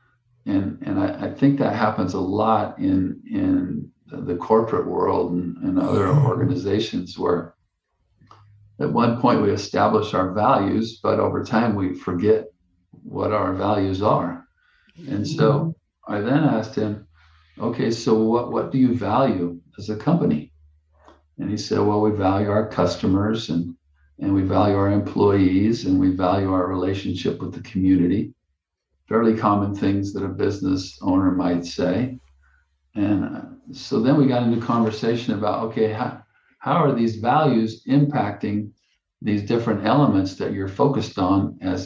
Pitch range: 95-120 Hz